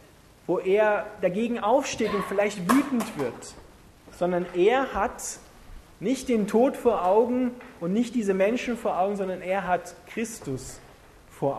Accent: German